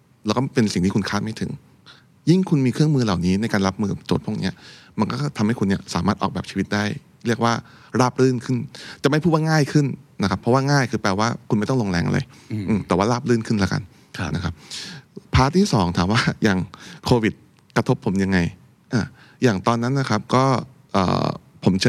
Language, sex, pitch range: Thai, male, 95-125 Hz